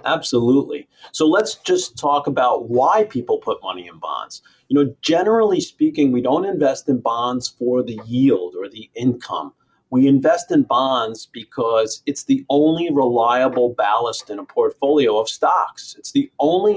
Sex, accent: male, American